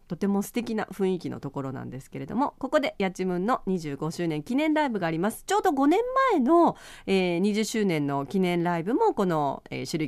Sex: female